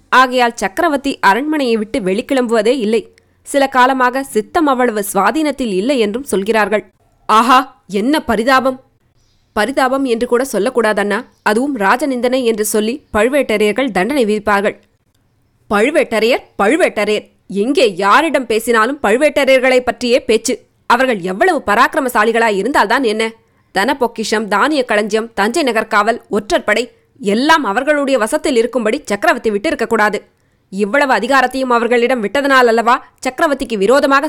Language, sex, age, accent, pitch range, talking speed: Tamil, female, 20-39, native, 215-280 Hz, 105 wpm